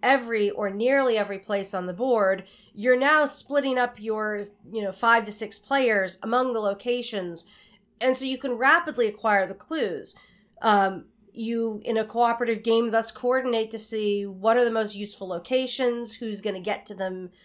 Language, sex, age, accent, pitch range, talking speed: English, female, 30-49, American, 205-245 Hz, 175 wpm